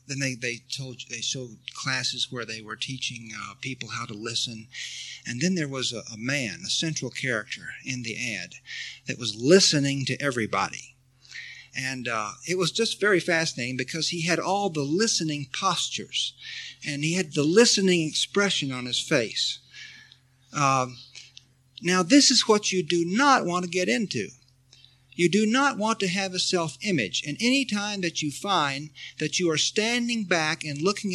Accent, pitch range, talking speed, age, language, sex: American, 130-190 Hz, 175 wpm, 50-69, English, male